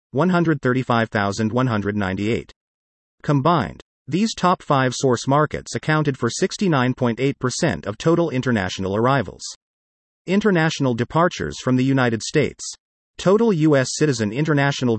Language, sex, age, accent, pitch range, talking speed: English, male, 40-59, American, 115-155 Hz, 95 wpm